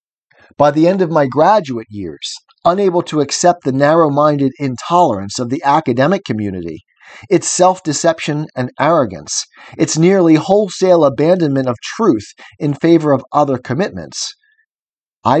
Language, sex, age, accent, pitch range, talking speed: English, male, 40-59, American, 130-175 Hz, 135 wpm